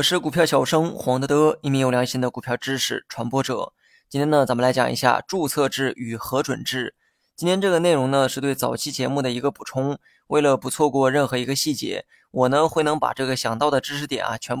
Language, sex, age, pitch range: Chinese, male, 20-39, 125-145 Hz